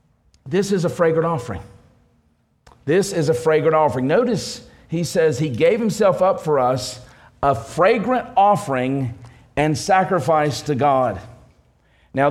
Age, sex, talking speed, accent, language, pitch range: 50-69, male, 130 wpm, American, English, 130-190 Hz